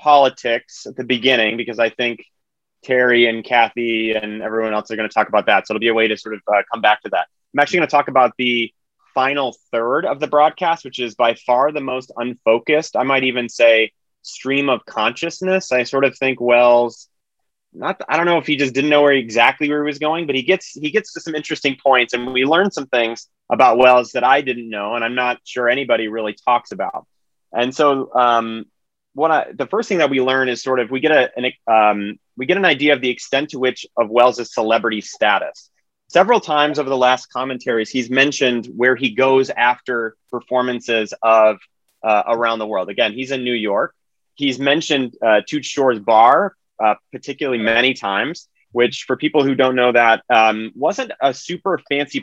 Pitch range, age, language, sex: 115-140 Hz, 30-49, English, male